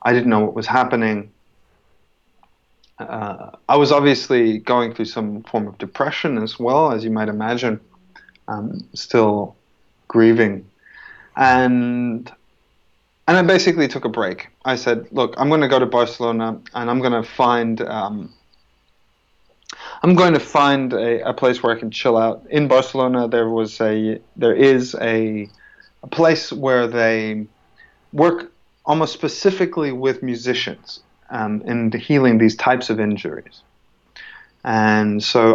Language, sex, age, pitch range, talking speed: English, male, 30-49, 115-140 Hz, 145 wpm